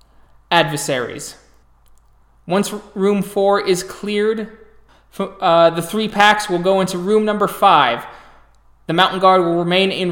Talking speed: 130 wpm